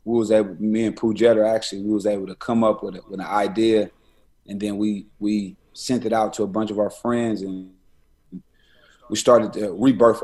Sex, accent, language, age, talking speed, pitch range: male, American, English, 30-49, 215 wpm, 100-115 Hz